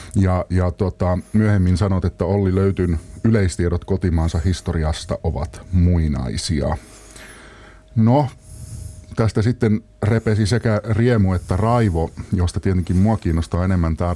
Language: Finnish